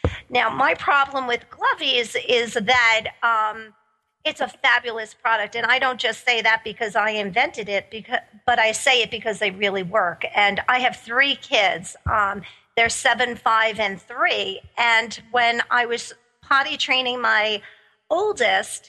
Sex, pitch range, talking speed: female, 225-270 Hz, 160 wpm